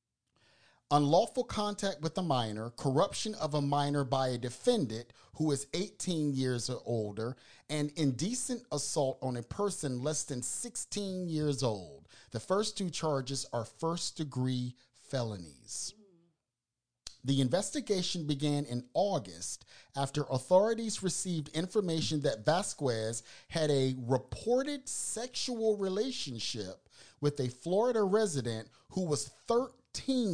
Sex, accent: male, American